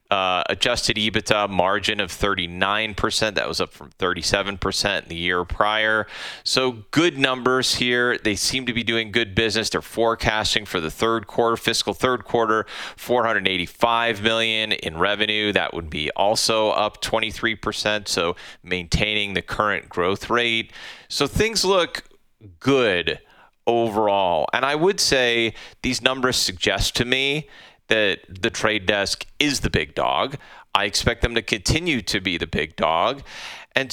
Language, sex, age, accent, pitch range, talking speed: English, male, 30-49, American, 100-120 Hz, 145 wpm